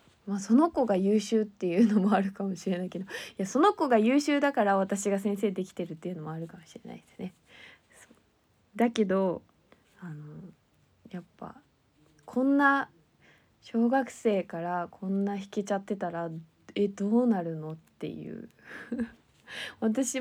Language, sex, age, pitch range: Japanese, female, 20-39, 165-215 Hz